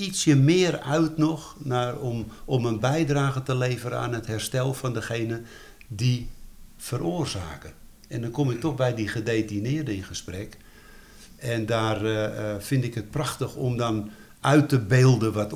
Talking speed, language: 160 wpm, Dutch